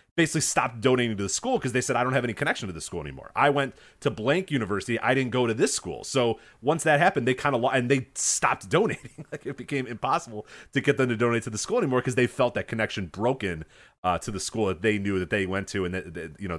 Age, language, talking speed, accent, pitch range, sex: 30-49, English, 270 wpm, American, 90-125 Hz, male